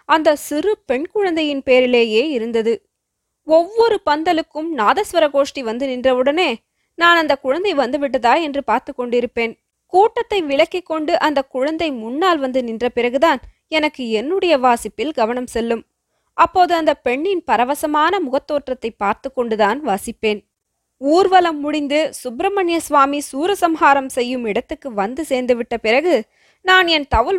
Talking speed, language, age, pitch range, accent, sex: 120 wpm, Tamil, 20-39, 240-325 Hz, native, female